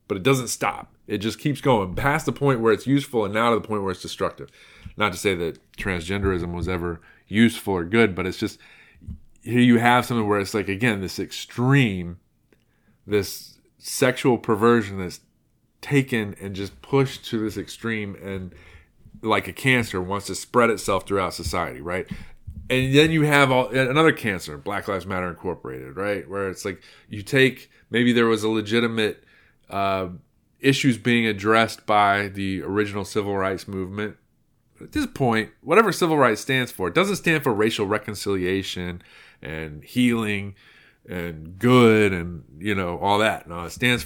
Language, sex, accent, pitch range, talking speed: English, male, American, 95-125 Hz, 170 wpm